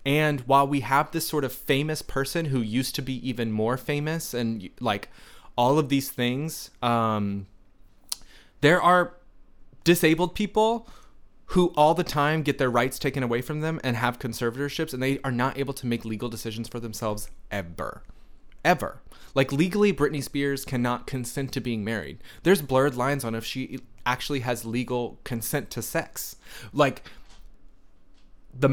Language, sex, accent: English, male, American